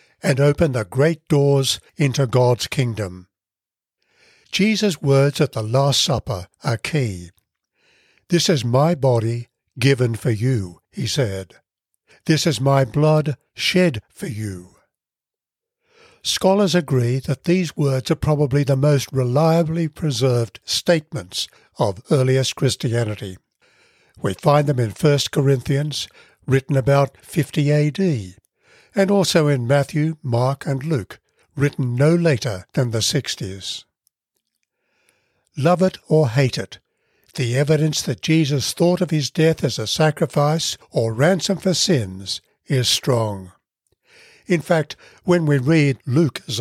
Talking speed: 125 wpm